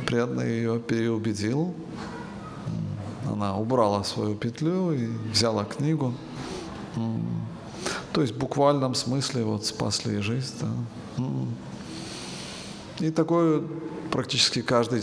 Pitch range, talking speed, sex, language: 110-130 Hz, 85 wpm, male, Russian